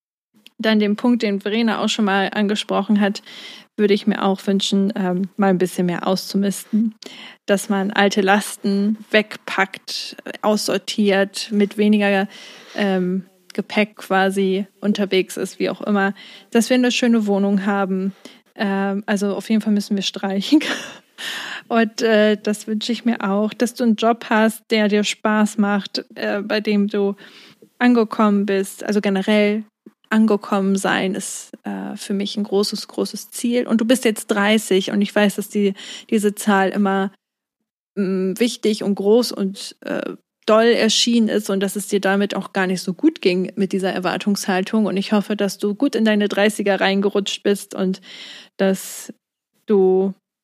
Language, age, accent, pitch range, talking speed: German, 20-39, German, 195-225 Hz, 150 wpm